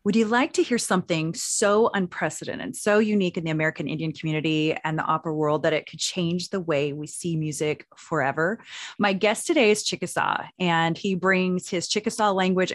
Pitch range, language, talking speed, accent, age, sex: 165-210 Hz, English, 190 wpm, American, 30-49, female